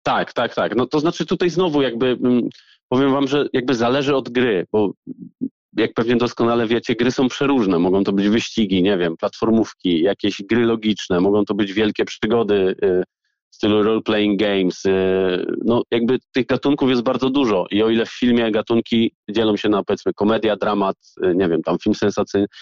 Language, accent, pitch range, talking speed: Polish, native, 100-125 Hz, 180 wpm